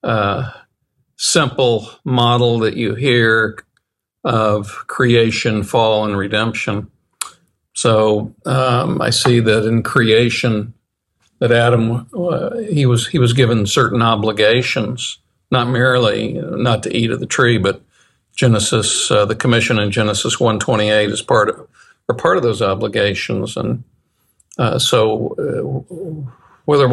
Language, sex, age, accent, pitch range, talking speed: English, male, 60-79, American, 105-125 Hz, 135 wpm